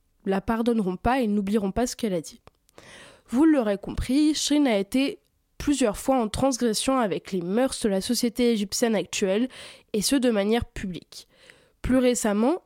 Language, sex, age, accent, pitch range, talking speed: French, female, 20-39, French, 205-275 Hz, 165 wpm